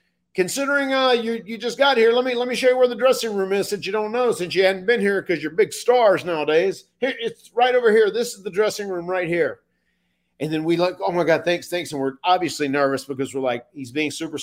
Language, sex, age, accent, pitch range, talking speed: English, male, 40-59, American, 145-235 Hz, 260 wpm